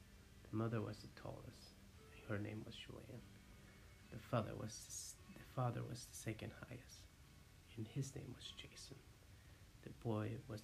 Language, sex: English, male